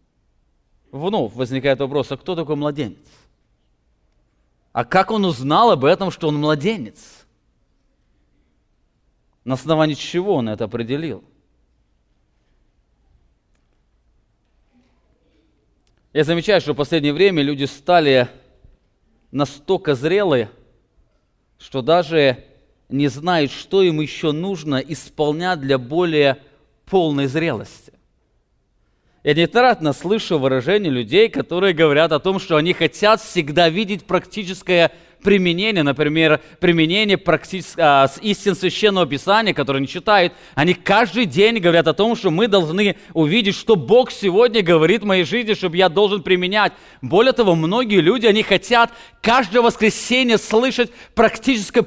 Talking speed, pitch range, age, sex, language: 120 wpm, 145-210 Hz, 20-39, male, English